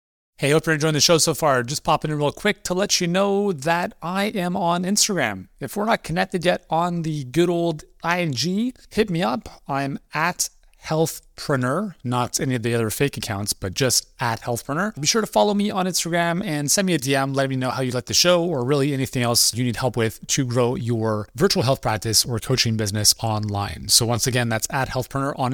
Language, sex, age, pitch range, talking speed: English, male, 30-49, 120-165 Hz, 220 wpm